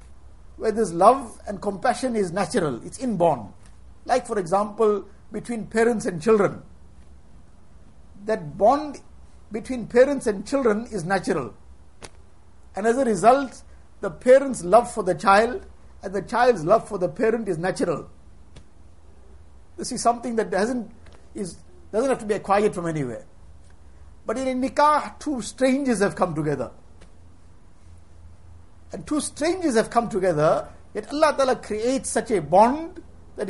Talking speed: 140 wpm